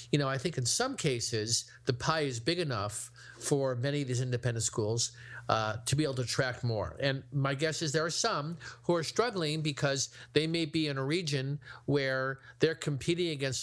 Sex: male